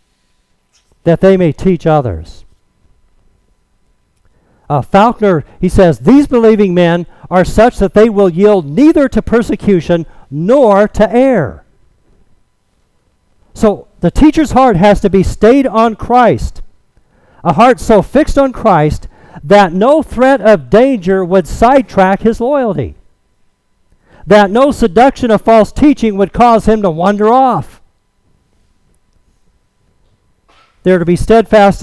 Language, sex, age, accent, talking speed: English, male, 50-69, American, 125 wpm